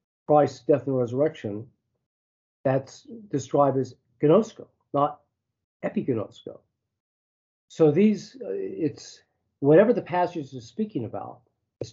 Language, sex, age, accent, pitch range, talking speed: English, male, 50-69, American, 120-160 Hz, 100 wpm